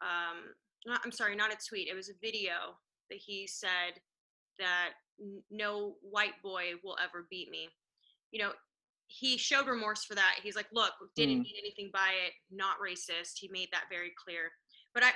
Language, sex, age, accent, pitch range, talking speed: English, female, 20-39, American, 220-300 Hz, 180 wpm